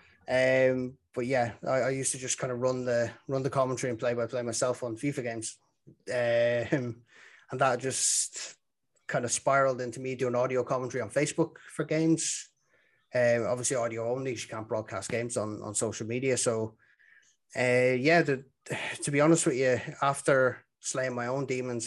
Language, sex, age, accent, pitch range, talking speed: English, male, 20-39, Irish, 115-130 Hz, 180 wpm